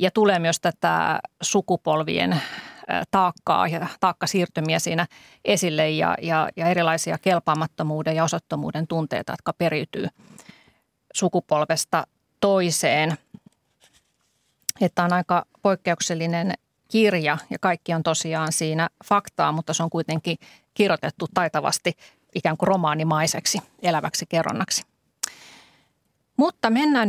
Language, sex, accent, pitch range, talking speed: Finnish, female, native, 160-190 Hz, 105 wpm